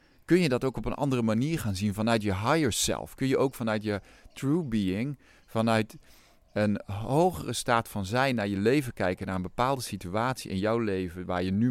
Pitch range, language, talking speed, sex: 100-125 Hz, Dutch, 210 wpm, male